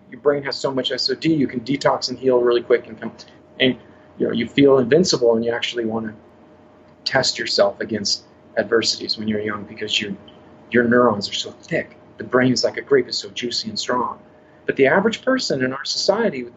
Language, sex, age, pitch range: English, male, 30-49, 115-160 Hz